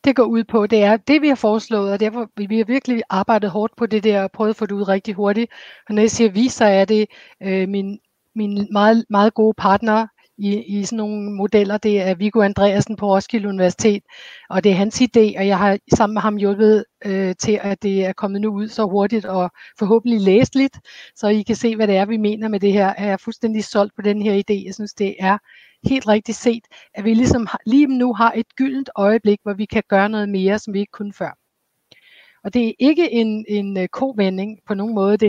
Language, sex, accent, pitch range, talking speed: Danish, female, native, 200-225 Hz, 240 wpm